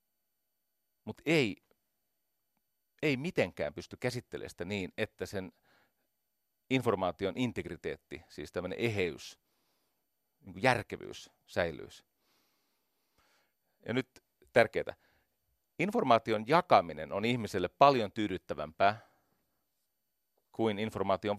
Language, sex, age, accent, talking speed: Finnish, male, 40-59, native, 80 wpm